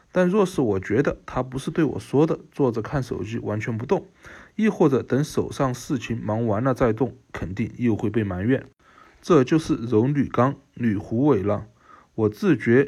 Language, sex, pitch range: Chinese, male, 105-135 Hz